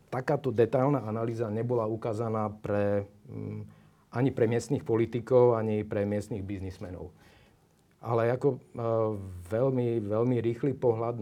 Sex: male